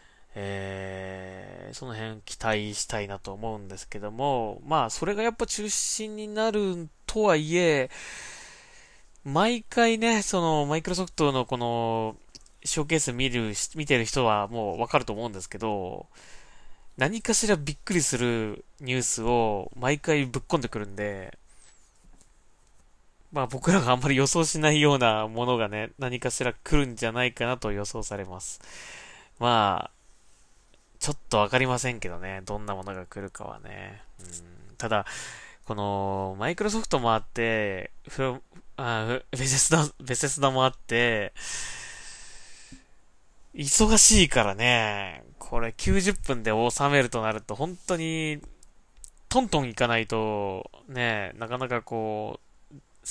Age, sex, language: 20-39, male, Japanese